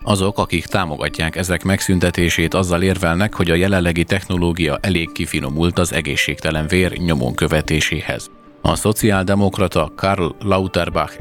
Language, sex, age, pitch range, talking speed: Hungarian, male, 30-49, 80-95 Hz, 110 wpm